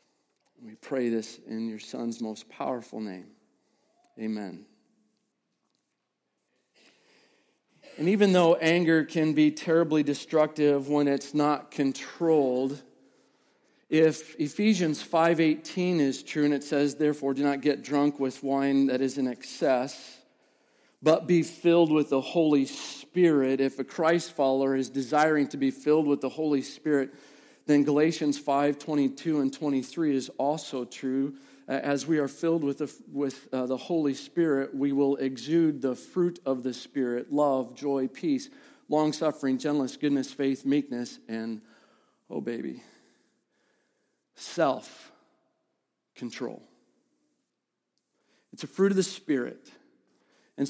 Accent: American